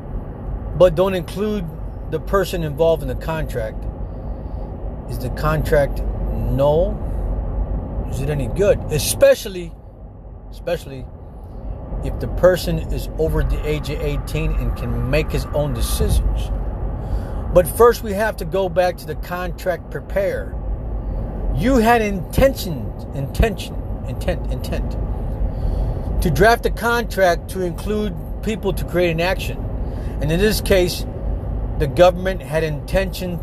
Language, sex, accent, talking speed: English, male, American, 125 wpm